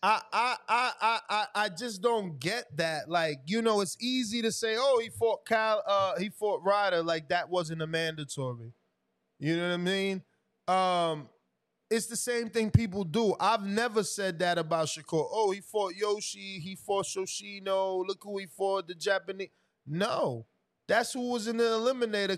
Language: English